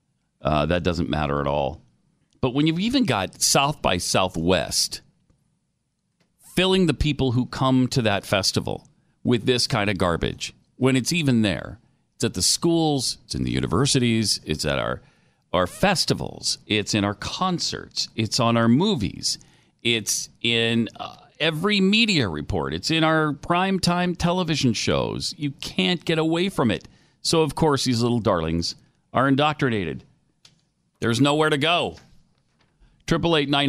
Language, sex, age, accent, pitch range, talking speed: English, male, 40-59, American, 100-150 Hz, 150 wpm